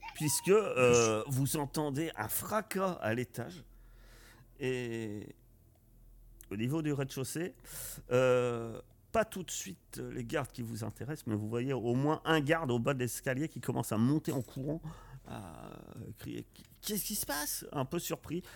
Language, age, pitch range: French, 40-59, 110-135 Hz